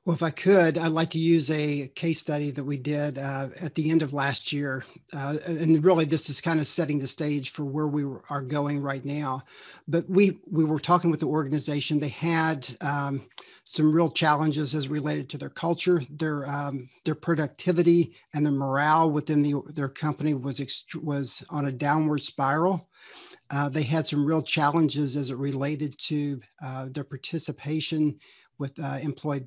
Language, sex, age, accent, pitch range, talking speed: English, male, 50-69, American, 140-165 Hz, 185 wpm